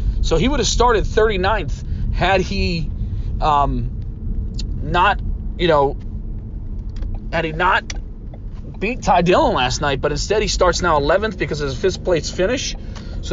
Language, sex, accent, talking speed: English, male, American, 150 wpm